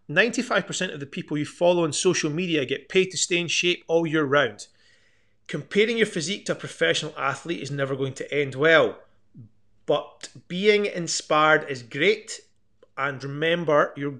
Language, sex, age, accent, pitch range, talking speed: English, male, 30-49, British, 135-170 Hz, 160 wpm